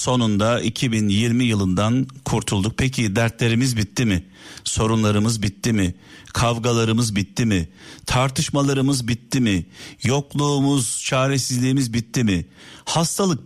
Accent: native